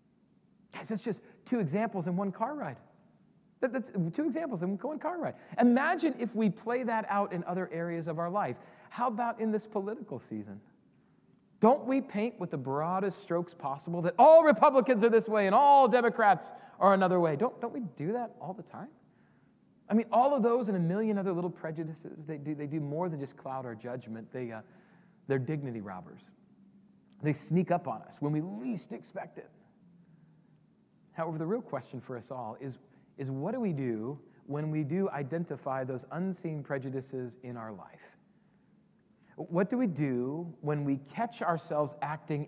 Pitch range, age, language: 135-205 Hz, 40-59, English